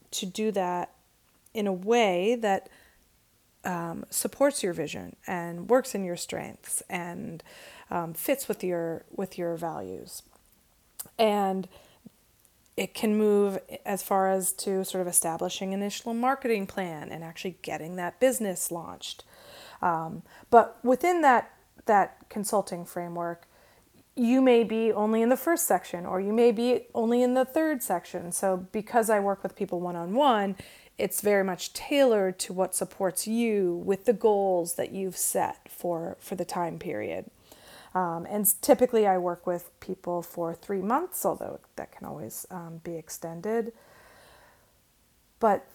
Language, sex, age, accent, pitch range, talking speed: English, female, 30-49, American, 180-230 Hz, 145 wpm